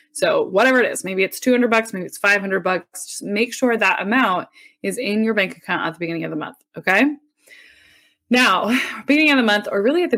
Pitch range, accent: 180-255 Hz, American